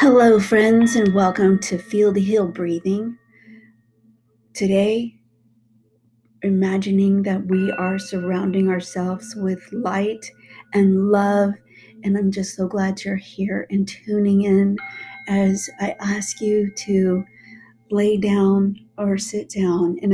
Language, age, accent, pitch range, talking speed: English, 40-59, American, 180-215 Hz, 120 wpm